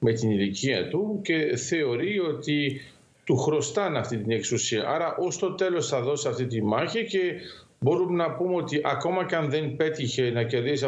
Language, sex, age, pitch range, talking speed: Greek, male, 50-69, 130-160 Hz, 180 wpm